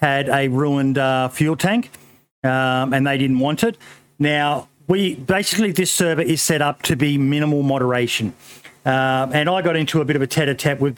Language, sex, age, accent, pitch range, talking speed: English, male, 40-59, Australian, 130-155 Hz, 195 wpm